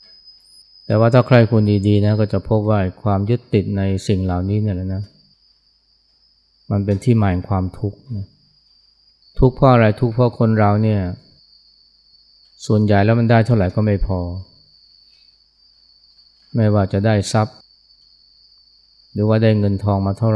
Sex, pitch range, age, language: male, 90-115 Hz, 20-39, Thai